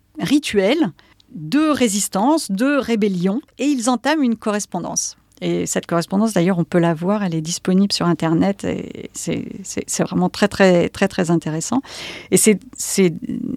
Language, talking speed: English, 160 wpm